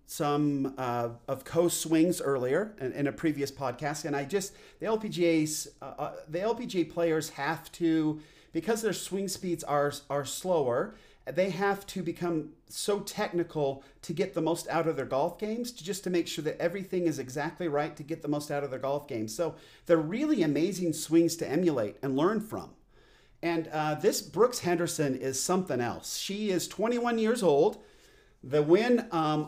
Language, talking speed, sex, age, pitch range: English, 185 wpm, male, 40-59, 145-195 Hz